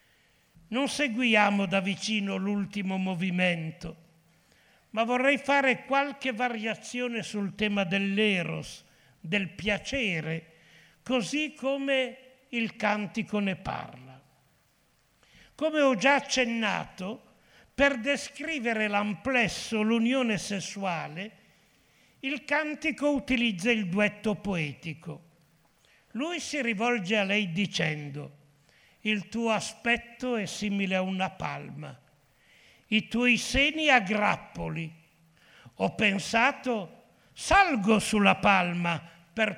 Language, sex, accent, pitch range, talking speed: Italian, male, native, 175-240 Hz, 95 wpm